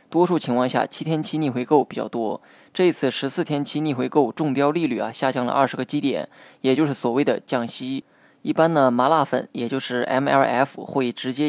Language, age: Chinese, 20-39